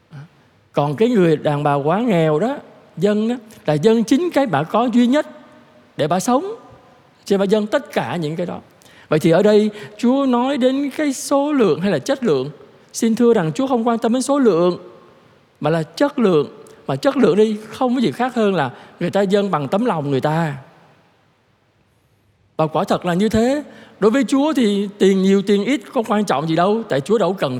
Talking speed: 215 wpm